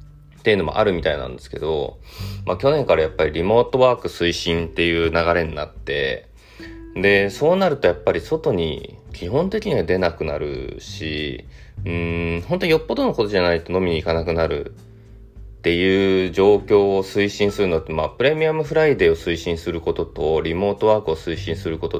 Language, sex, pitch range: Japanese, male, 85-120 Hz